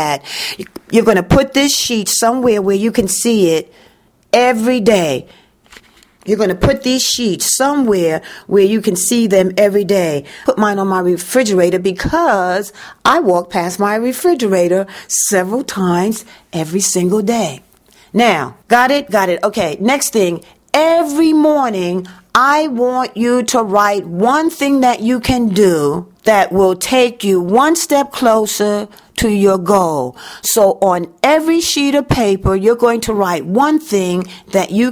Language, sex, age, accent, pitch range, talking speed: English, female, 40-59, American, 190-245 Hz, 150 wpm